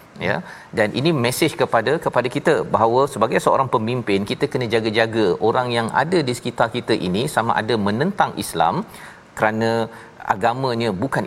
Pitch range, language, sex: 110-125 Hz, Malayalam, male